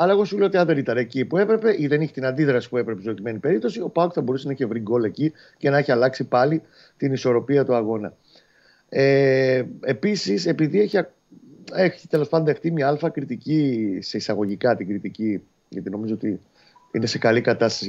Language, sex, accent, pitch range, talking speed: Greek, male, native, 120-155 Hz, 200 wpm